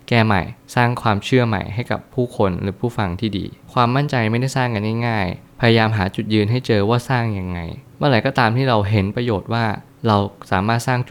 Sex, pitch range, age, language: male, 100-125 Hz, 20-39, Thai